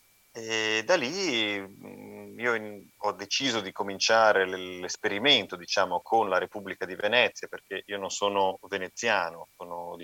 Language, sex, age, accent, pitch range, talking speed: Italian, male, 30-49, native, 90-105 Hz, 145 wpm